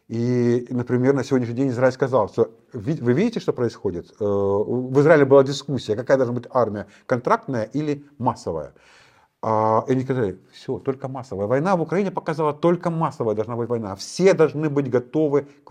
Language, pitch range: Russian, 110-145 Hz